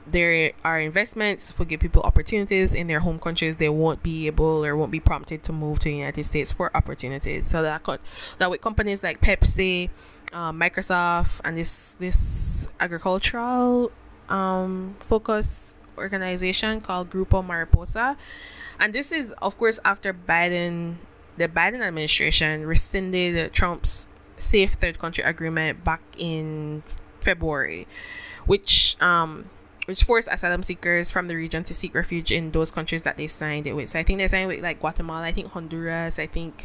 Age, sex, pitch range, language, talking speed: 10-29, female, 160-205 Hz, English, 160 wpm